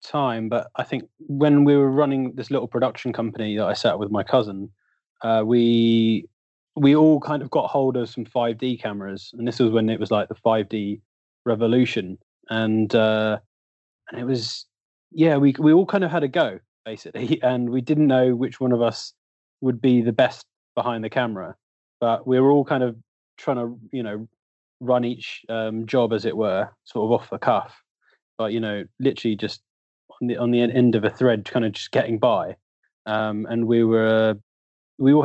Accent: British